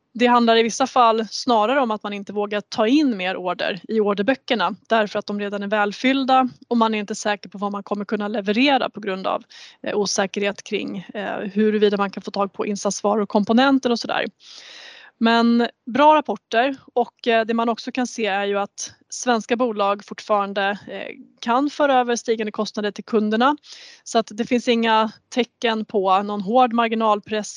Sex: female